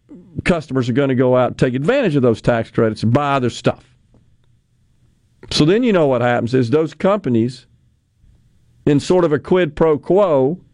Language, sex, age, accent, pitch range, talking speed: English, male, 50-69, American, 120-165 Hz, 185 wpm